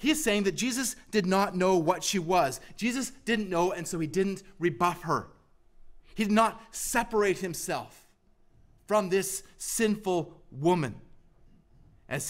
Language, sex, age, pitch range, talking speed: English, male, 30-49, 155-195 Hz, 145 wpm